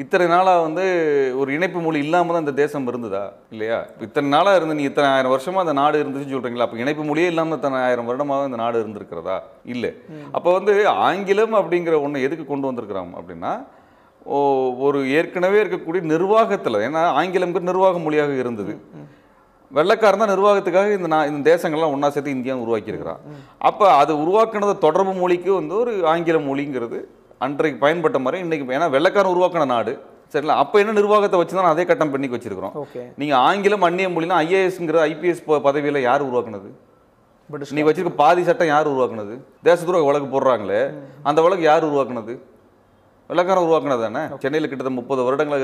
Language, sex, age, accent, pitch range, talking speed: Tamil, male, 30-49, native, 140-180 Hz, 160 wpm